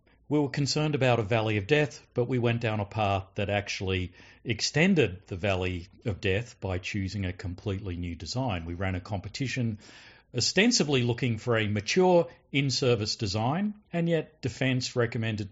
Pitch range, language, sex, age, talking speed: 100-125 Hz, English, male, 50-69, 160 wpm